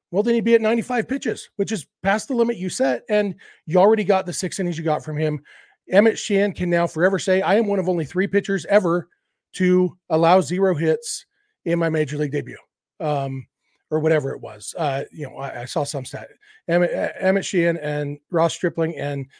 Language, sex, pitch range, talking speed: English, male, 155-200 Hz, 210 wpm